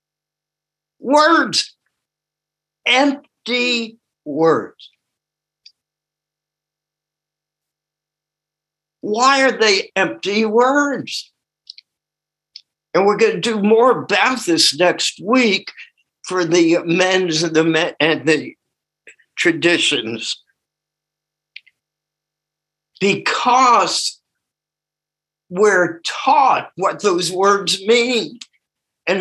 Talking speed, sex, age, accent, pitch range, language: 70 wpm, male, 60-79, American, 155-245 Hz, English